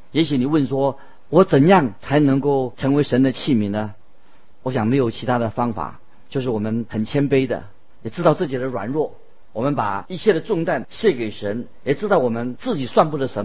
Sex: male